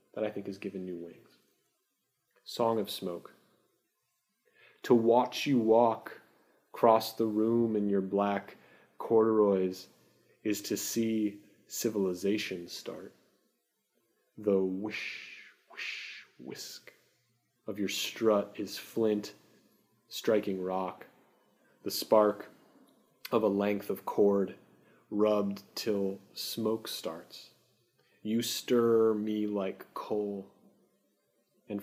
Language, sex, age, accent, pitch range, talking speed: English, male, 30-49, American, 100-110 Hz, 100 wpm